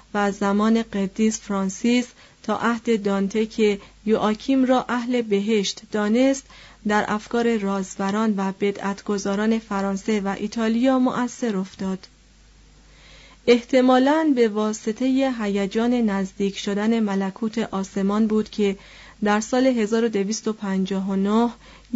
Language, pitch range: Persian, 200-240 Hz